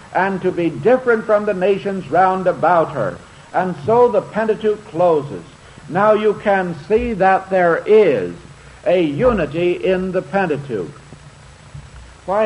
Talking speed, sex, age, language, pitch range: 135 wpm, male, 70-89, English, 155-200 Hz